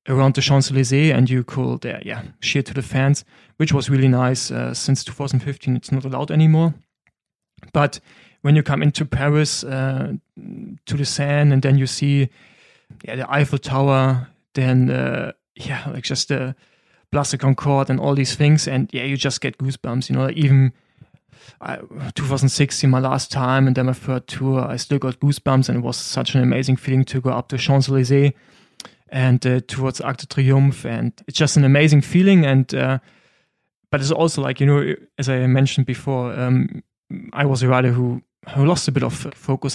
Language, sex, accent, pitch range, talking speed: English, male, German, 130-145 Hz, 190 wpm